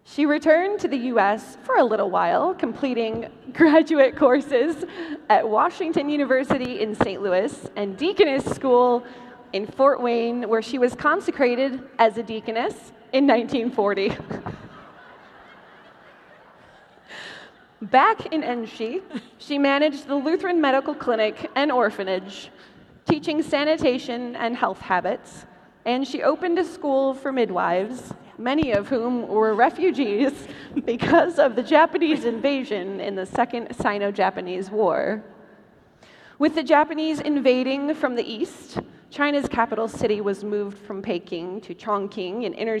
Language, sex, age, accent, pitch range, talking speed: English, female, 20-39, American, 215-295 Hz, 125 wpm